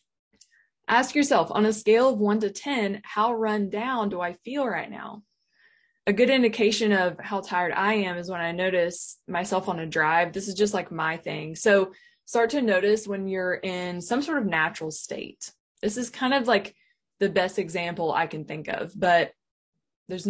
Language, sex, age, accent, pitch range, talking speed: English, female, 20-39, American, 175-215 Hz, 190 wpm